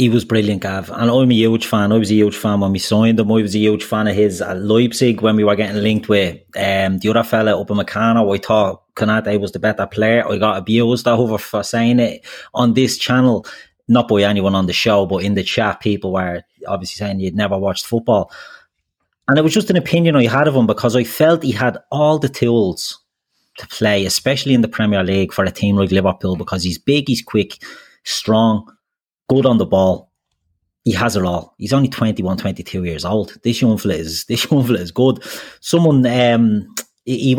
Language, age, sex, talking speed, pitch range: English, 30-49, male, 215 wpm, 100-120 Hz